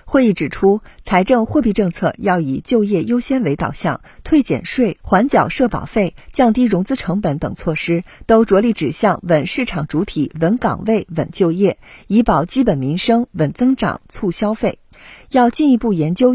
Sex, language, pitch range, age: female, Chinese, 170-235 Hz, 50-69